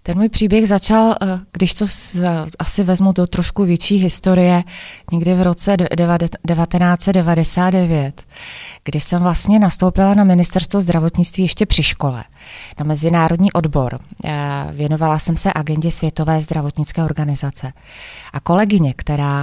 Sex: female